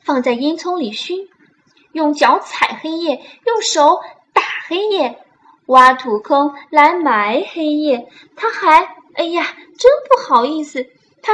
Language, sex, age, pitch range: Chinese, female, 10-29, 240-315 Hz